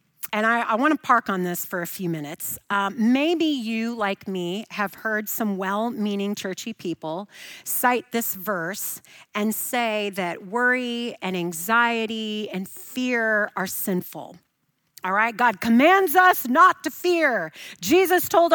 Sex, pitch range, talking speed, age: female, 200-300 Hz, 145 wpm, 40-59